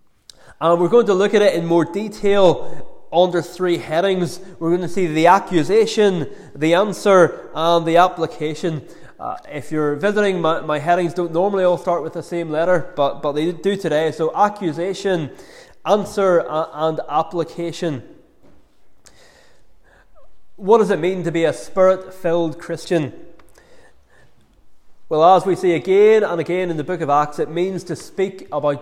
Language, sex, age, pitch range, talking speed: English, male, 20-39, 155-185 Hz, 160 wpm